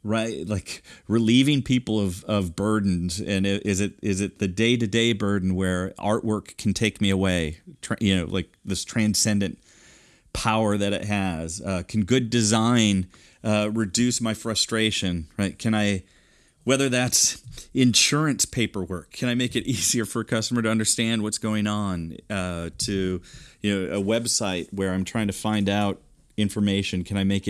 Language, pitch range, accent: English, 95-115 Hz, American